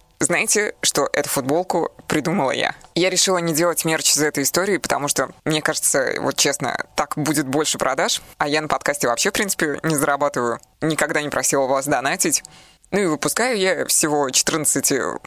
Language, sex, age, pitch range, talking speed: Russian, female, 20-39, 140-165 Hz, 175 wpm